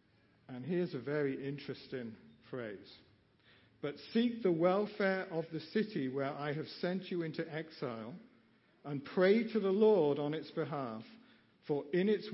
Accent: British